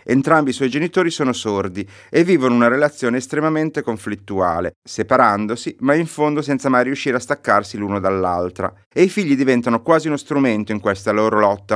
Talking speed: 175 wpm